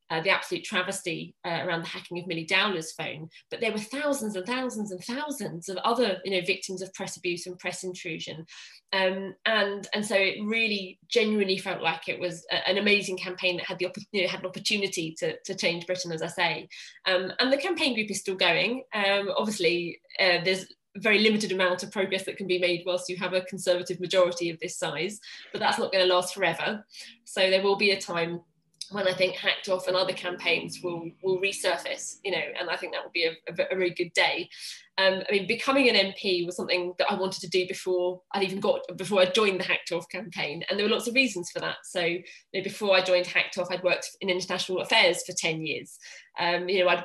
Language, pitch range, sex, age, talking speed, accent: English, 175-200 Hz, female, 20-39, 230 wpm, British